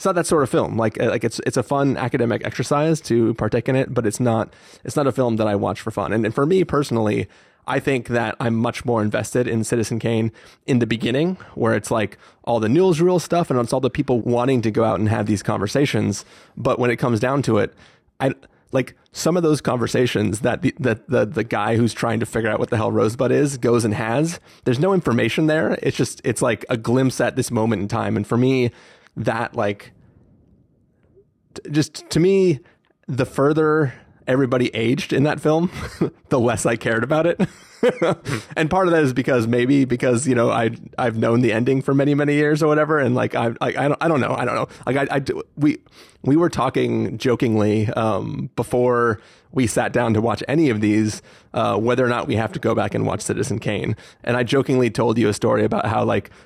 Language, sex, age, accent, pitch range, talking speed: English, male, 30-49, American, 115-140 Hz, 225 wpm